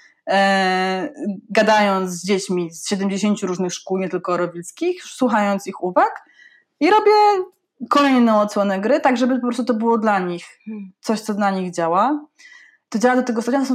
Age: 20-39